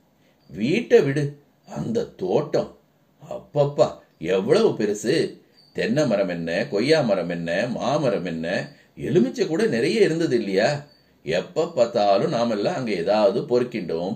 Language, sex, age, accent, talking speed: Tamil, male, 50-69, native, 110 wpm